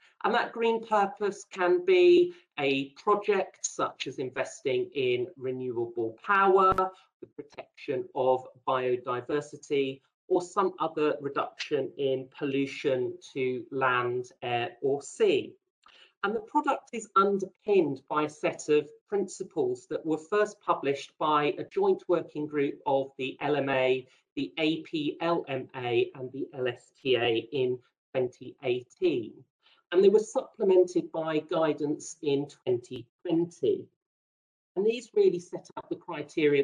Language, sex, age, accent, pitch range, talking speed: English, male, 40-59, British, 135-225 Hz, 120 wpm